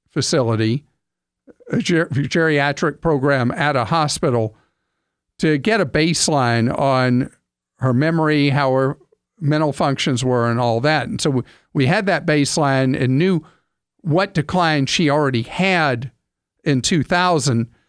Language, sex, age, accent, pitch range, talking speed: English, male, 50-69, American, 130-170 Hz, 125 wpm